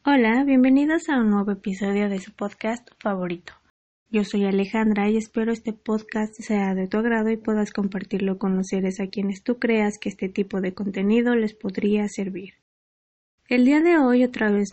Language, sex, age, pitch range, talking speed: Spanish, female, 20-39, 195-225 Hz, 185 wpm